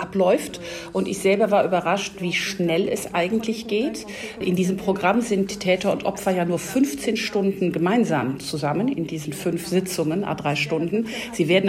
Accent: German